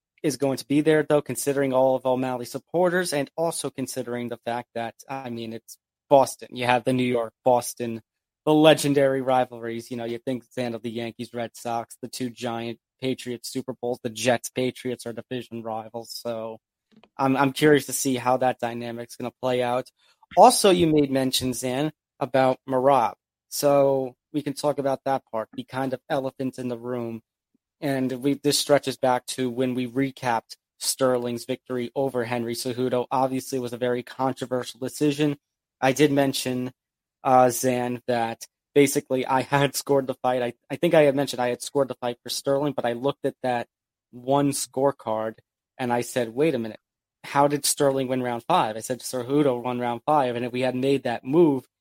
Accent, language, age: American, English, 30-49